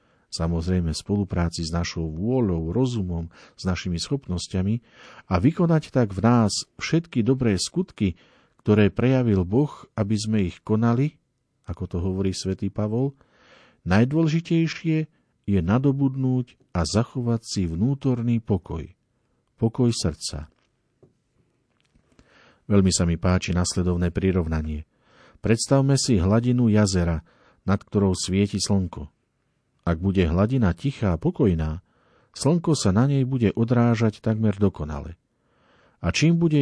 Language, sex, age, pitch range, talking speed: Slovak, male, 50-69, 90-130 Hz, 115 wpm